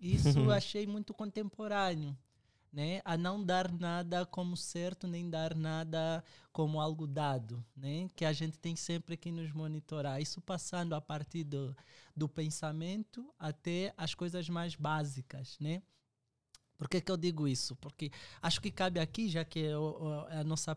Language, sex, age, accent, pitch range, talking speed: Portuguese, male, 20-39, Brazilian, 150-200 Hz, 160 wpm